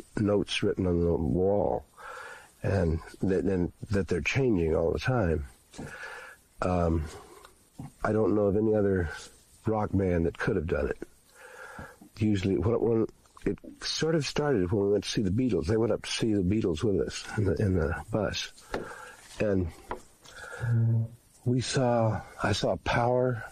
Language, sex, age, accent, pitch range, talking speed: English, male, 60-79, American, 95-120 Hz, 160 wpm